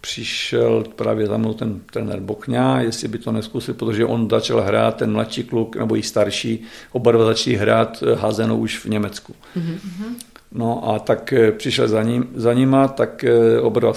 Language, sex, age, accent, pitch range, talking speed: Czech, male, 50-69, native, 110-120 Hz, 170 wpm